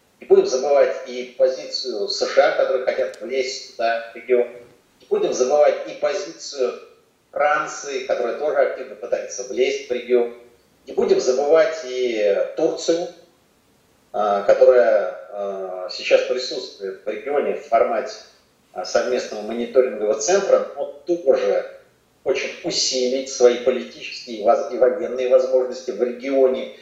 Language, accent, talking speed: Russian, native, 115 wpm